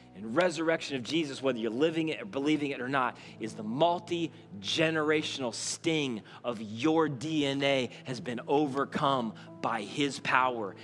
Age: 30-49